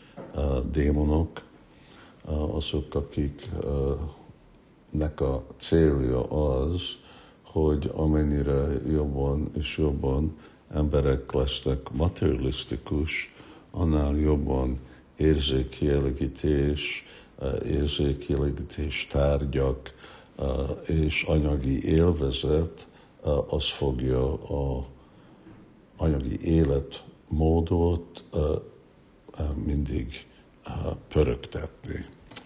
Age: 60-79